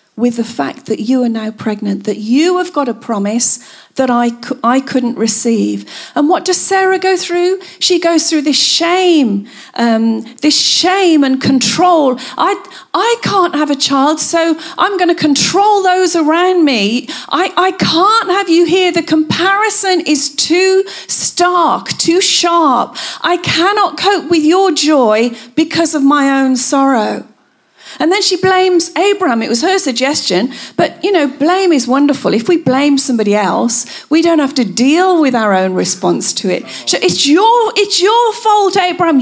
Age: 40-59